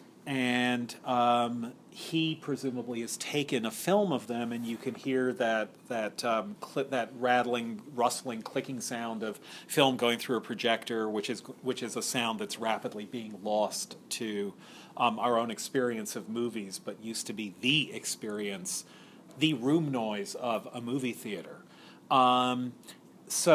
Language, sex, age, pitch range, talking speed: English, male, 40-59, 115-130 Hz, 155 wpm